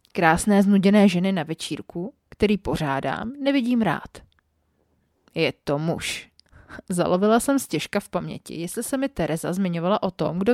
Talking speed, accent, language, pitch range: 140 wpm, native, Czech, 165-230 Hz